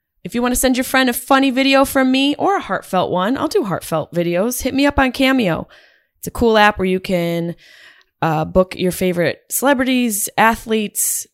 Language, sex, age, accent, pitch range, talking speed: English, female, 20-39, American, 160-220 Hz, 200 wpm